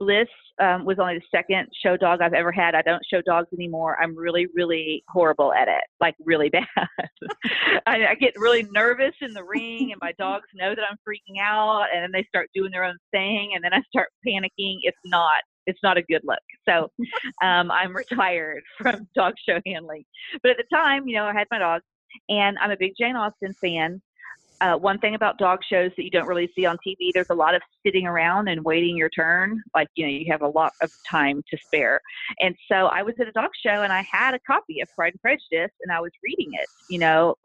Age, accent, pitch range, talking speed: 40-59, American, 170-220 Hz, 230 wpm